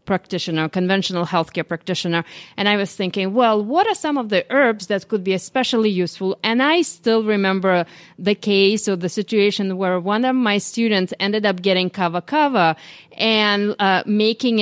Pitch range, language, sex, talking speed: 185-225 Hz, English, female, 170 wpm